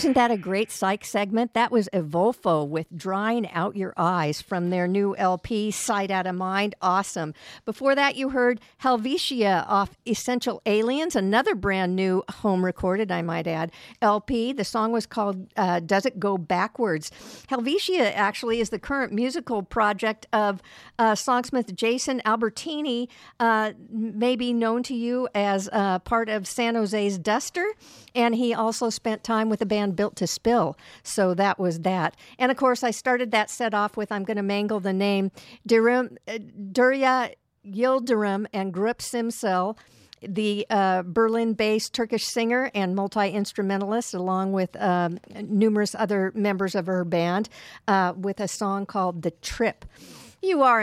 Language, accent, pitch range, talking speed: English, American, 190-235 Hz, 155 wpm